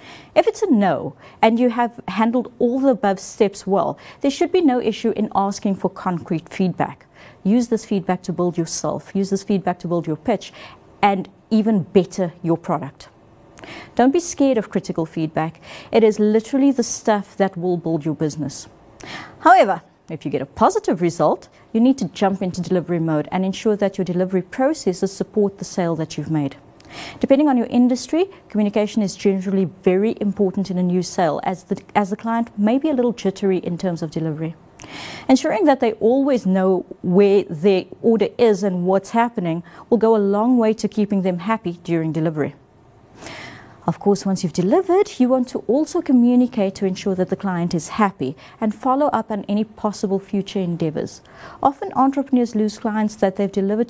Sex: female